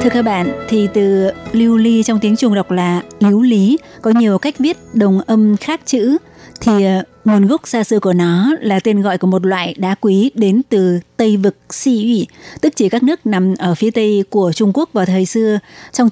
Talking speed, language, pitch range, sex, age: 220 wpm, Vietnamese, 195-230 Hz, female, 20-39